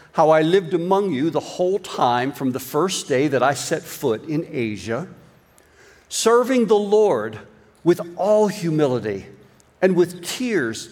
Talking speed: 150 wpm